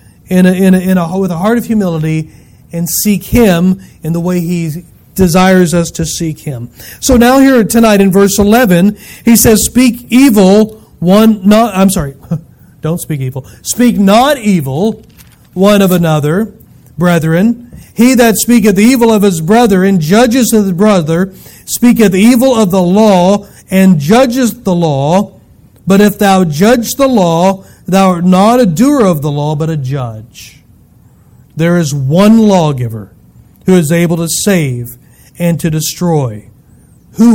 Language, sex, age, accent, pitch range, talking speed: English, male, 40-59, American, 150-205 Hz, 155 wpm